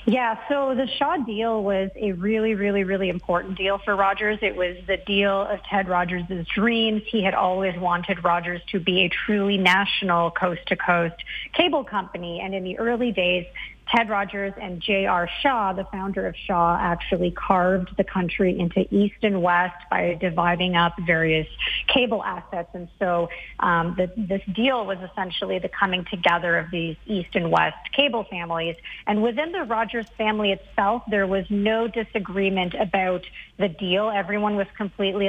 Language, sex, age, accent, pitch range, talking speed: English, female, 30-49, American, 180-205 Hz, 165 wpm